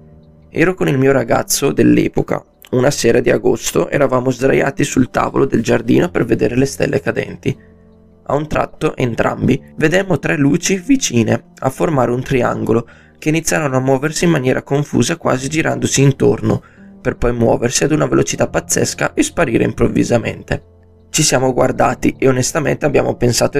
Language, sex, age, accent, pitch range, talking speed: Italian, male, 20-39, native, 115-155 Hz, 155 wpm